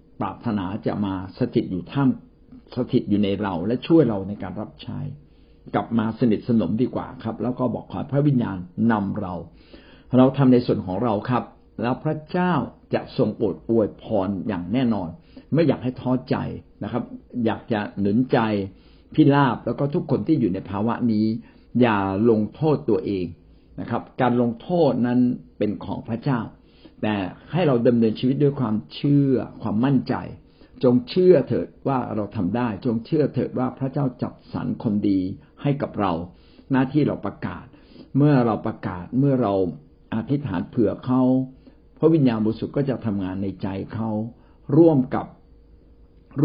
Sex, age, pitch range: male, 60-79, 105-135 Hz